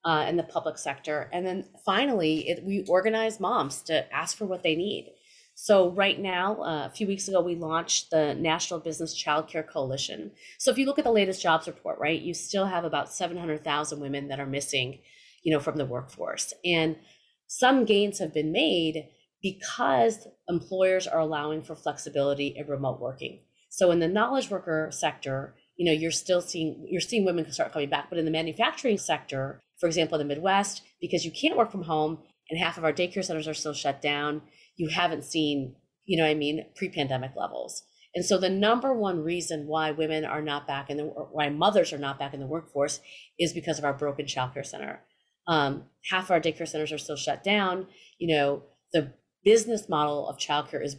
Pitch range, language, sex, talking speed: 145-180 Hz, English, female, 205 wpm